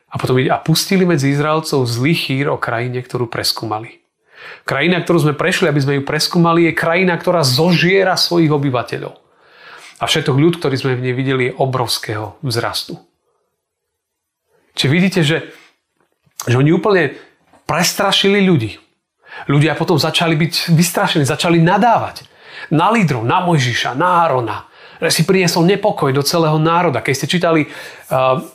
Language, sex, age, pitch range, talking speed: Slovak, male, 40-59, 125-170 Hz, 145 wpm